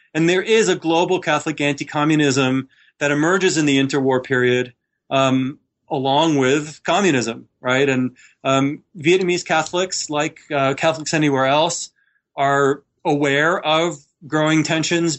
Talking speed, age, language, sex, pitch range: 125 wpm, 30-49, English, male, 135-170 Hz